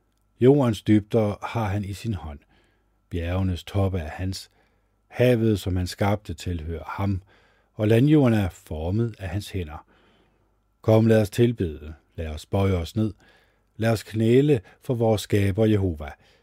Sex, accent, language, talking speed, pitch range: male, native, Danish, 145 wpm, 90-110 Hz